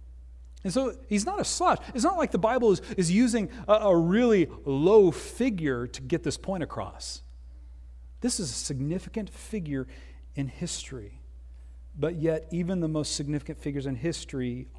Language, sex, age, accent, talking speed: English, male, 40-59, American, 160 wpm